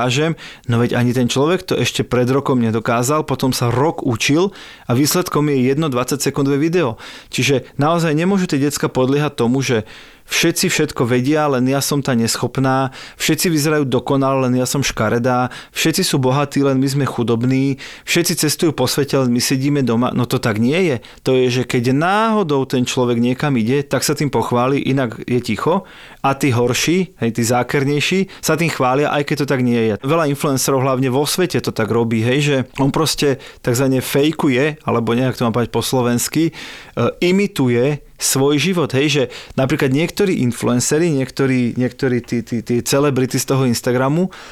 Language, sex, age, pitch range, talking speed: Slovak, male, 30-49, 125-150 Hz, 175 wpm